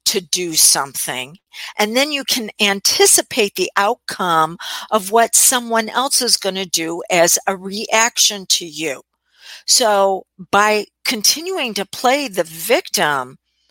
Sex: female